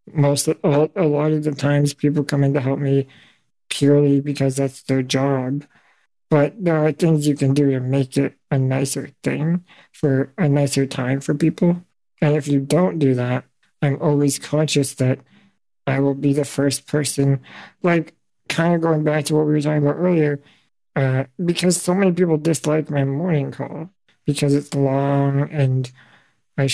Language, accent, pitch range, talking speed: English, American, 135-150 Hz, 175 wpm